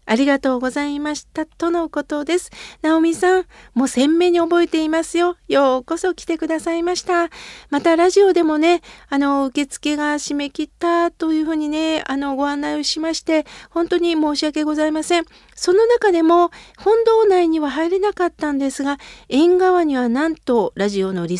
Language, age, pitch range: Japanese, 40-59, 255-325 Hz